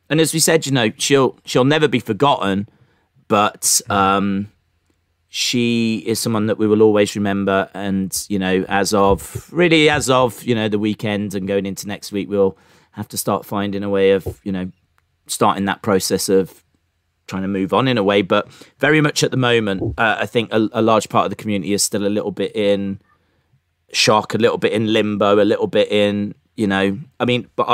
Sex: male